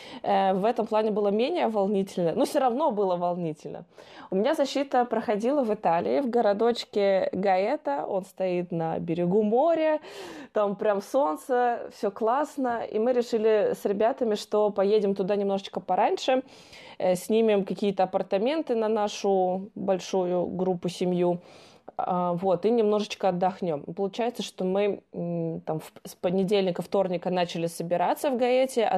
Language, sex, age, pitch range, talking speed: Russian, female, 20-39, 185-225 Hz, 130 wpm